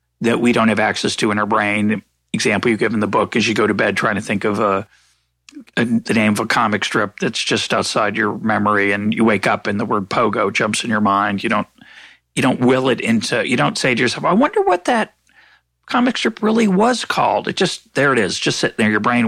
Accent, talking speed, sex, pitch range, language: American, 250 wpm, male, 105-175 Hz, English